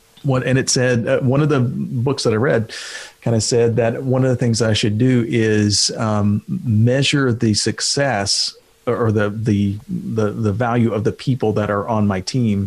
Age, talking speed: 40-59, 185 wpm